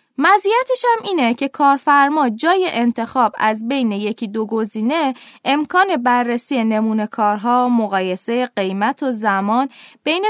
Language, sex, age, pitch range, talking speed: Persian, female, 20-39, 210-310 Hz, 120 wpm